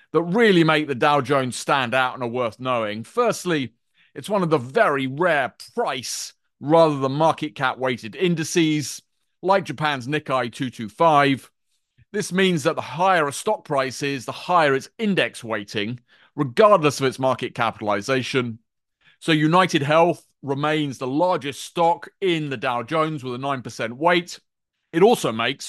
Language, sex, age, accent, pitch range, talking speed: English, male, 30-49, British, 130-170 Hz, 155 wpm